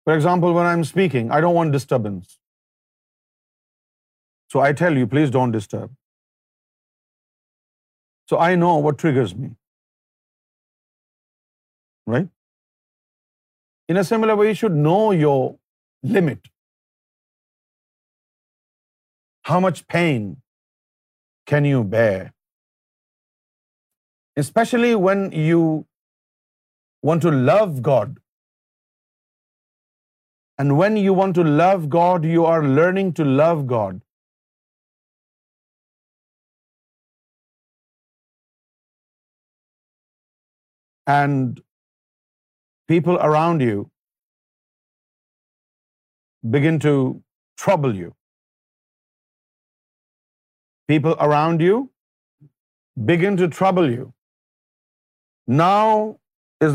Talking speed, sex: 80 wpm, male